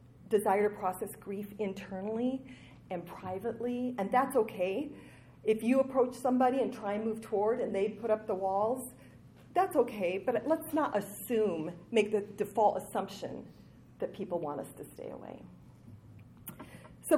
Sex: female